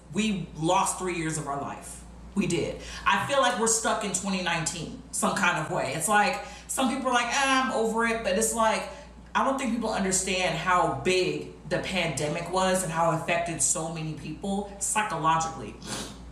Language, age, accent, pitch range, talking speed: English, 40-59, American, 175-225 Hz, 190 wpm